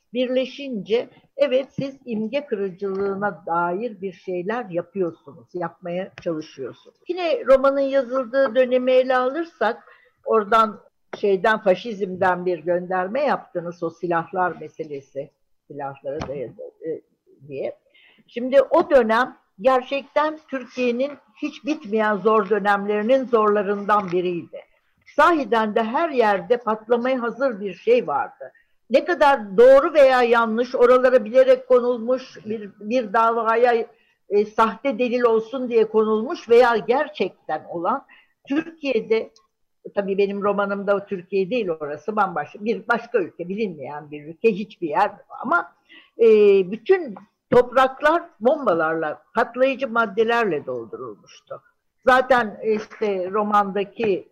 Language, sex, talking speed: Turkish, female, 105 wpm